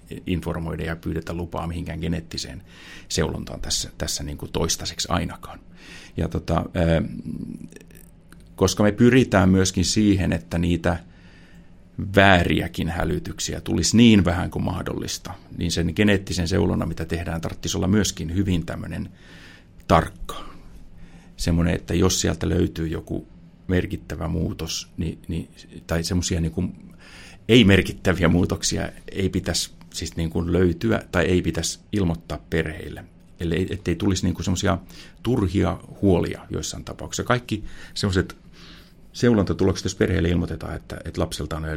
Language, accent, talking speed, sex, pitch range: Finnish, native, 125 wpm, male, 85-95 Hz